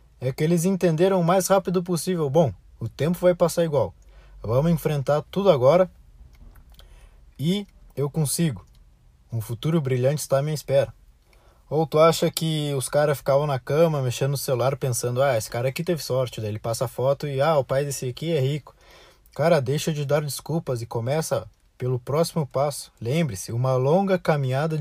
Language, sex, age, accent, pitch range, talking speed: Portuguese, male, 20-39, Brazilian, 120-160 Hz, 175 wpm